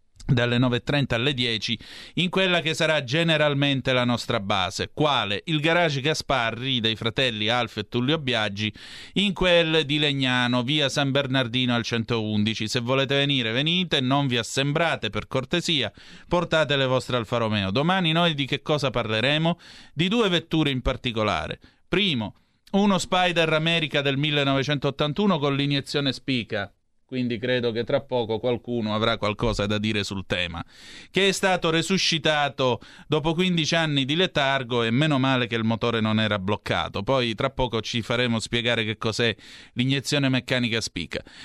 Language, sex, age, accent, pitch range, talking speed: Italian, male, 30-49, native, 115-155 Hz, 155 wpm